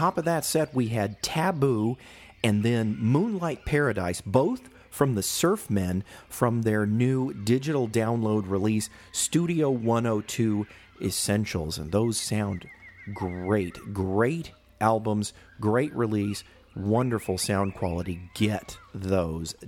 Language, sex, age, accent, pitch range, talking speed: English, male, 40-59, American, 100-125 Hz, 115 wpm